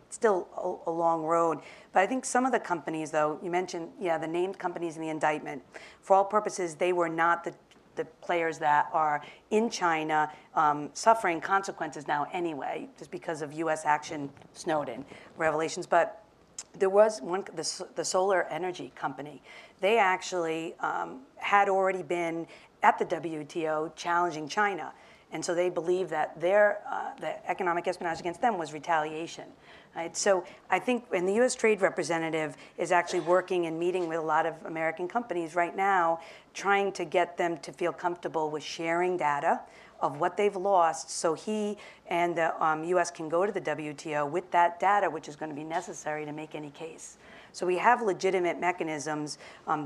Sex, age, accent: female, 40-59, American